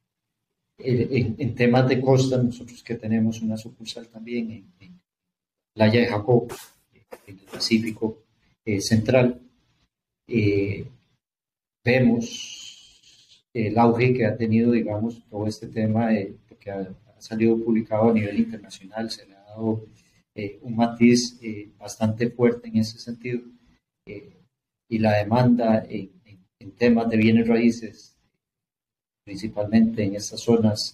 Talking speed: 135 wpm